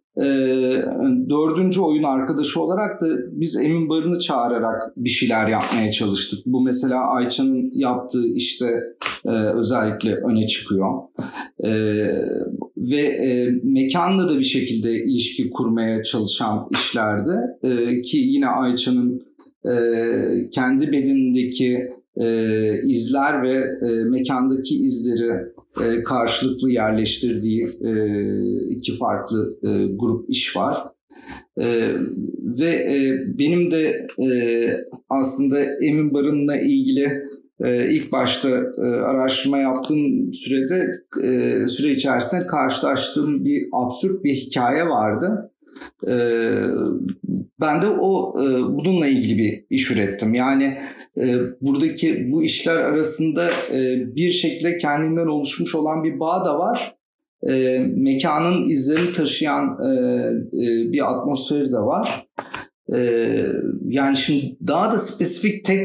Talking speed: 105 wpm